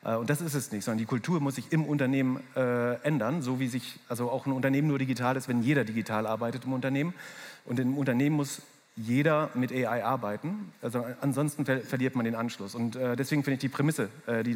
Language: German